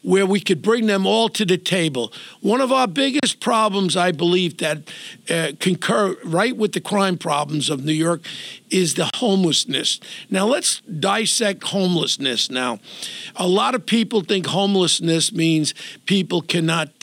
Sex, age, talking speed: male, 50-69, 155 wpm